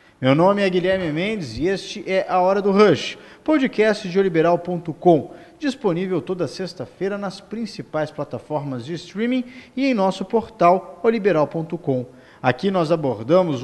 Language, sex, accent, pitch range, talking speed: Portuguese, male, Brazilian, 155-200 Hz, 135 wpm